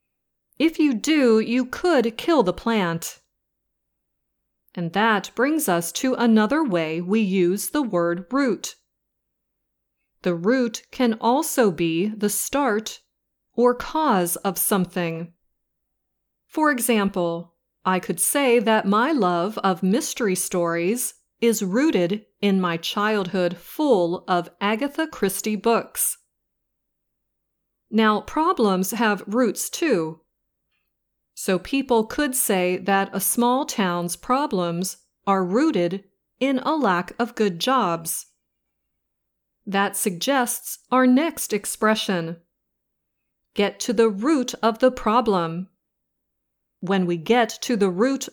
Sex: female